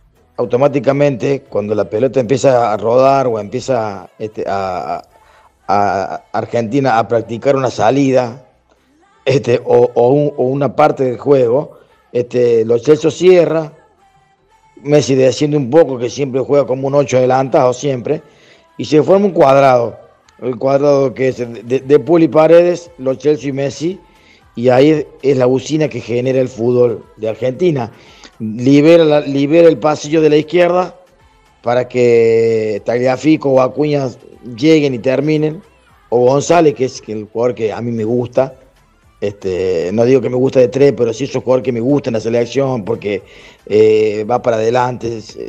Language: Spanish